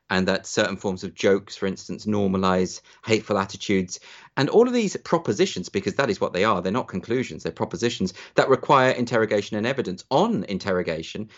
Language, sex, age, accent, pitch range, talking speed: English, male, 40-59, British, 95-130 Hz, 180 wpm